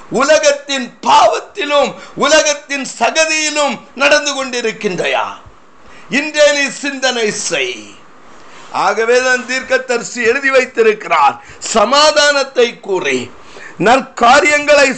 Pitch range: 260-295 Hz